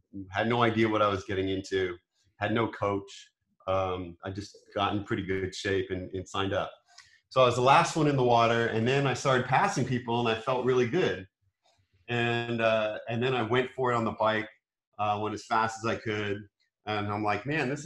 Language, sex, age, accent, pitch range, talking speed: English, male, 40-59, American, 100-120 Hz, 220 wpm